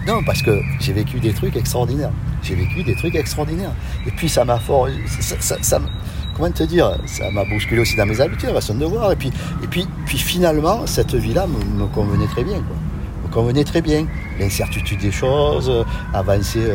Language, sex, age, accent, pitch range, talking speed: French, male, 50-69, French, 95-115 Hz, 195 wpm